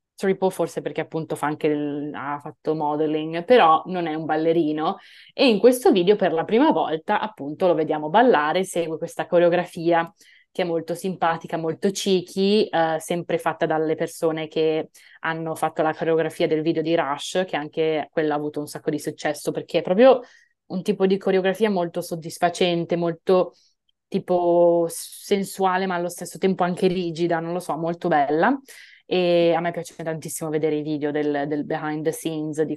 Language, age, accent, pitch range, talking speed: Italian, 20-39, native, 155-185 Hz, 175 wpm